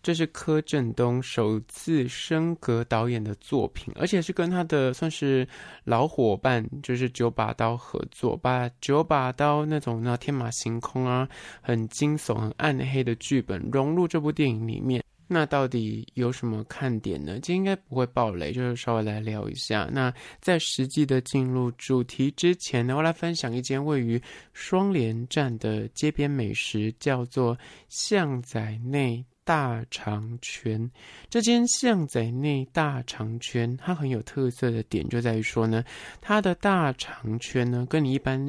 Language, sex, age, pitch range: Chinese, male, 20-39, 115-150 Hz